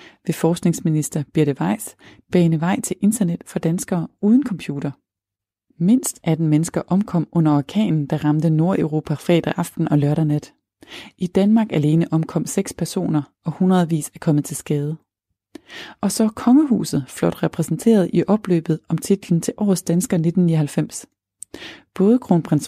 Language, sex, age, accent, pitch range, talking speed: Danish, female, 30-49, native, 150-195 Hz, 140 wpm